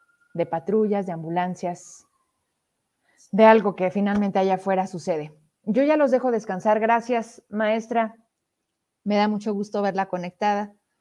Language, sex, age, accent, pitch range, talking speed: Spanish, female, 30-49, Mexican, 195-255 Hz, 130 wpm